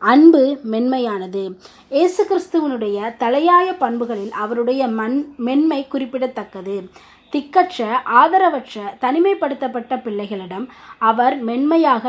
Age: 20-39